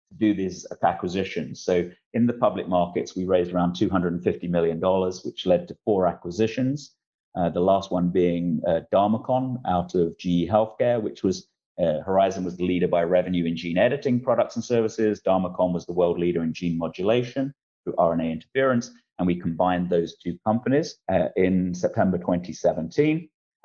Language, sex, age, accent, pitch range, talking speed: English, male, 30-49, British, 85-95 Hz, 165 wpm